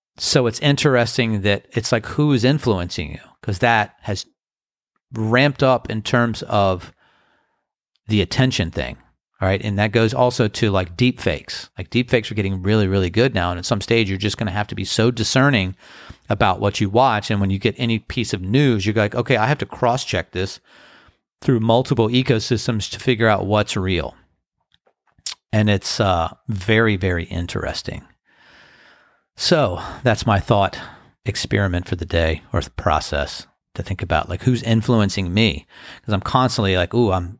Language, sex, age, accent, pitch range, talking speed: English, male, 40-59, American, 95-120 Hz, 180 wpm